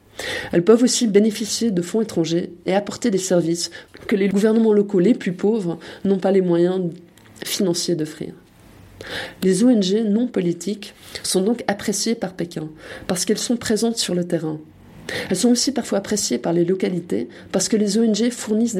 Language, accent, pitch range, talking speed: French, French, 175-220 Hz, 170 wpm